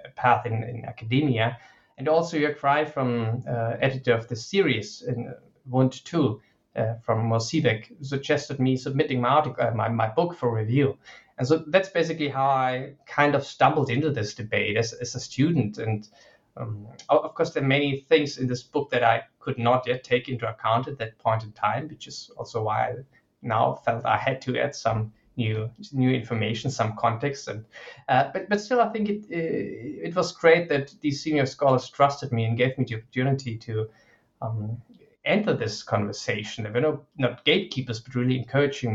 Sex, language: male, English